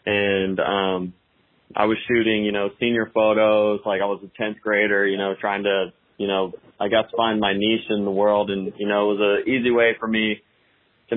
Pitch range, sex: 100-115 Hz, male